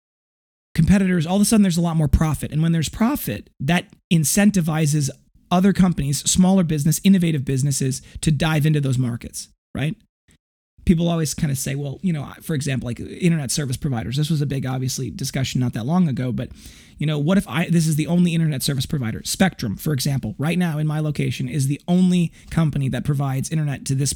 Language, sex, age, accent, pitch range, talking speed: English, male, 30-49, American, 135-175 Hz, 205 wpm